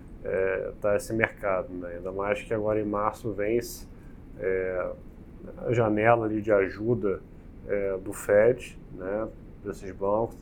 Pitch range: 100-120 Hz